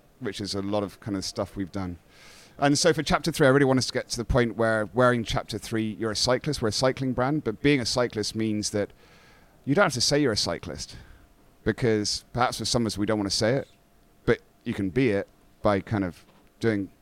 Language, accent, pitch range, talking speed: English, British, 100-120 Hz, 245 wpm